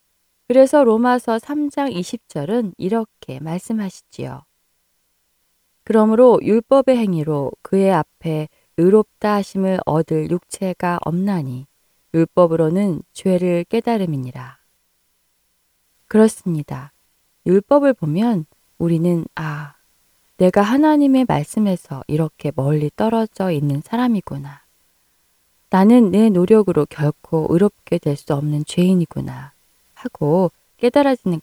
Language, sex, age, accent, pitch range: Korean, female, 20-39, native, 155-225 Hz